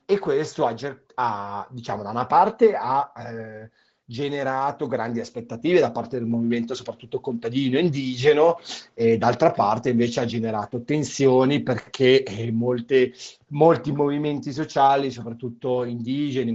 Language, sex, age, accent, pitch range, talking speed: Italian, male, 40-59, native, 120-140 Hz, 130 wpm